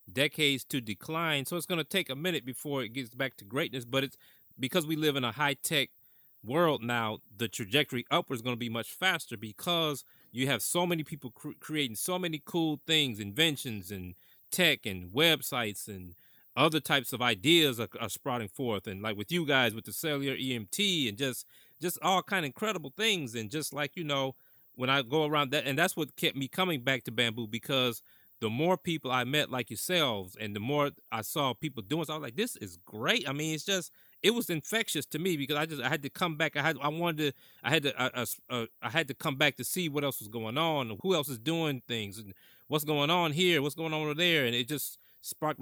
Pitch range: 120-160 Hz